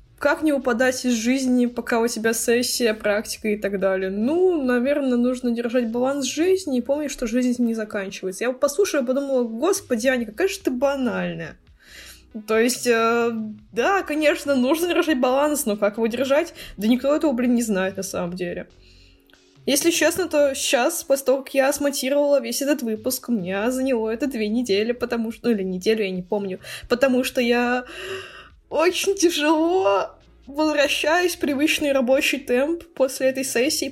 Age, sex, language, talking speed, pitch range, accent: 20-39, female, Russian, 165 wpm, 235-285 Hz, native